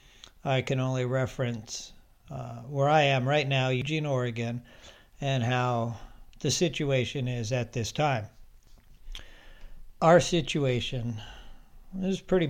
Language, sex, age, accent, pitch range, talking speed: English, male, 60-79, American, 120-145 Hz, 115 wpm